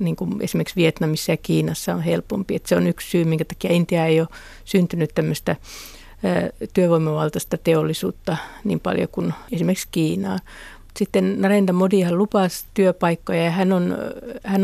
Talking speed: 145 wpm